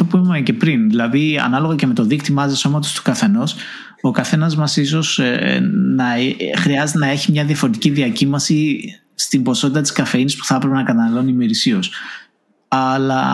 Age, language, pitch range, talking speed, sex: 20-39, Greek, 140-190 Hz, 170 wpm, male